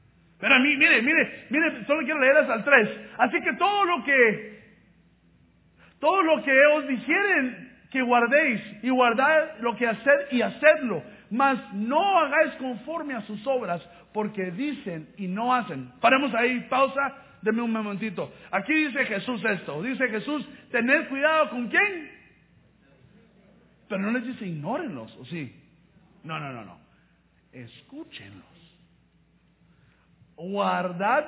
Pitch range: 200-290 Hz